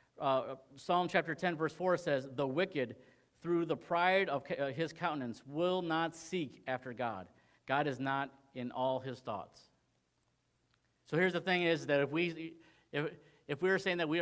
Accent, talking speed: American, 180 wpm